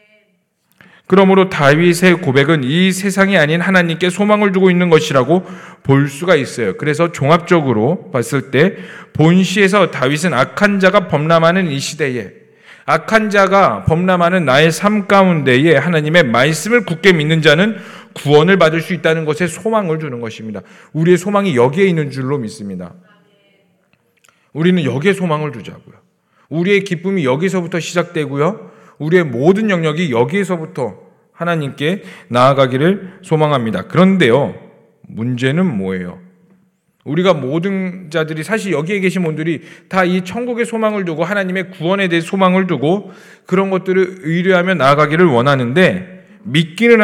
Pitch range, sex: 155-195 Hz, male